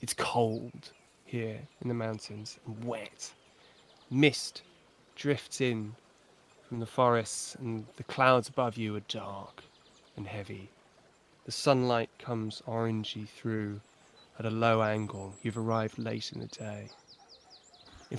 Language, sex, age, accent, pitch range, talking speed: English, male, 20-39, British, 115-135 Hz, 130 wpm